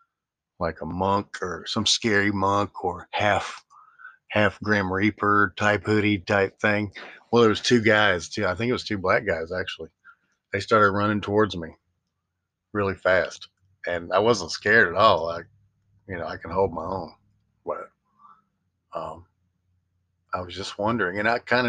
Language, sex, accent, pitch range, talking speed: English, male, American, 90-105 Hz, 165 wpm